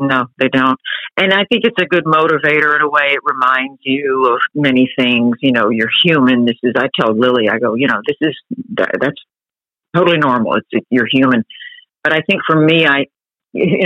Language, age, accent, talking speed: English, 50-69, American, 205 wpm